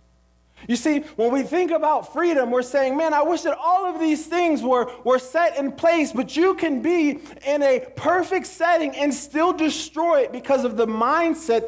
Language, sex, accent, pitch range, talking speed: English, male, American, 175-265 Hz, 195 wpm